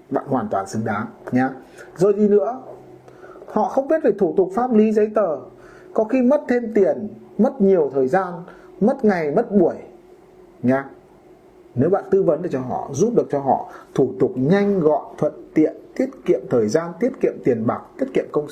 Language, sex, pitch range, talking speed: Vietnamese, male, 170-235 Hz, 200 wpm